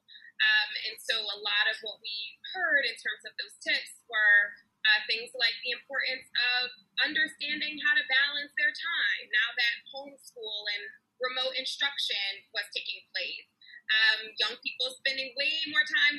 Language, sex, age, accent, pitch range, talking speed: English, female, 20-39, American, 220-310 Hz, 160 wpm